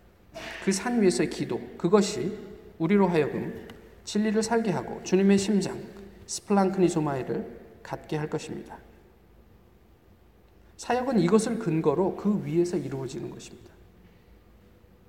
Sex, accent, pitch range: male, native, 135-190 Hz